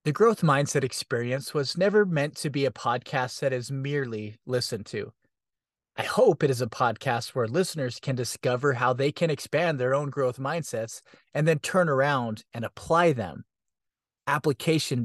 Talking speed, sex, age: 170 wpm, male, 30-49